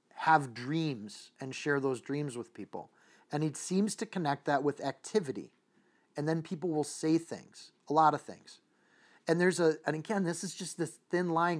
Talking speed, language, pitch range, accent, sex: 190 wpm, English, 145-180 Hz, American, male